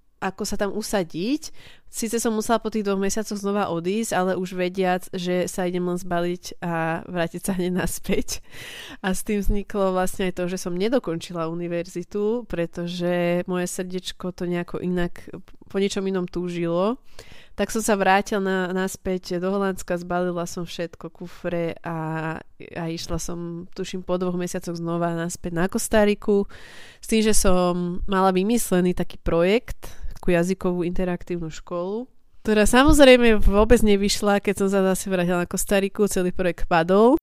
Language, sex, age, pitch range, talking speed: Slovak, female, 20-39, 175-205 Hz, 155 wpm